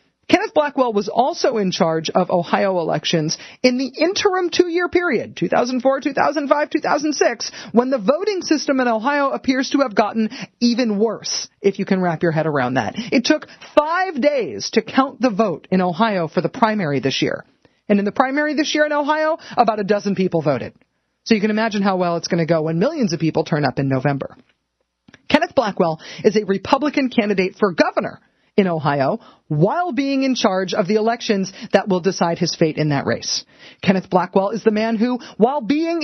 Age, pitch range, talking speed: 40-59, 180-280 Hz, 195 wpm